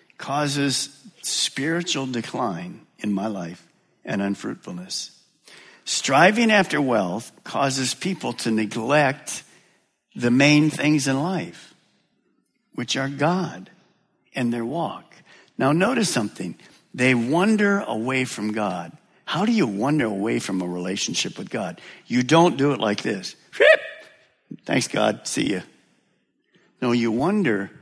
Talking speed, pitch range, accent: 125 wpm, 105-155 Hz, American